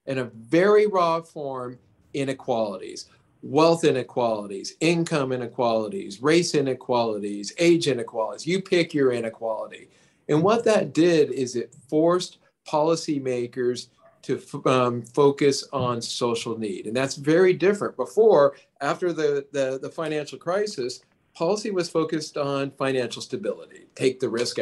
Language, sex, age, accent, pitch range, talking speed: English, male, 40-59, American, 130-165 Hz, 125 wpm